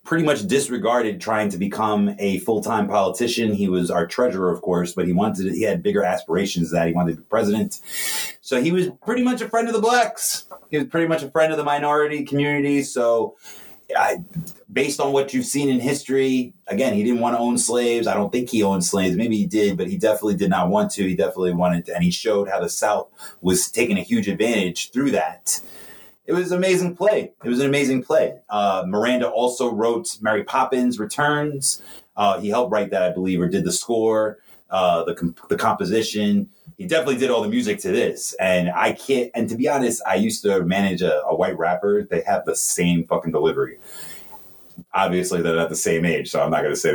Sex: male